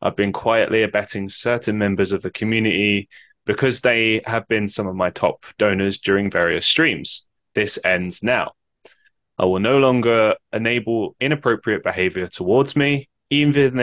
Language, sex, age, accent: English, male, 10-29, British